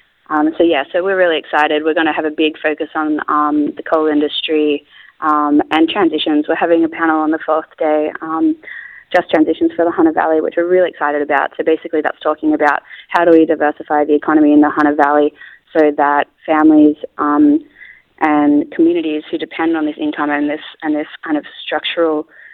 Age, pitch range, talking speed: 20-39, 155-175 Hz, 200 wpm